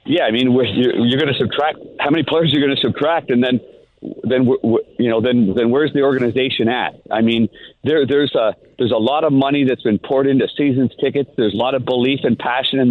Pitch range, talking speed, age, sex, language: 125-150 Hz, 230 wpm, 50-69, male, English